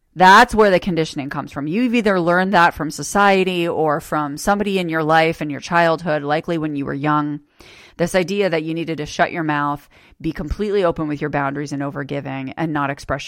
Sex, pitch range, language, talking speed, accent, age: female, 150-200 Hz, English, 210 wpm, American, 30-49